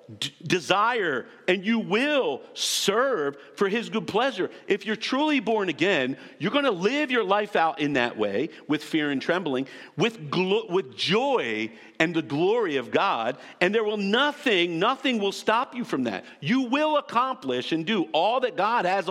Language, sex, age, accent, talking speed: English, male, 50-69, American, 175 wpm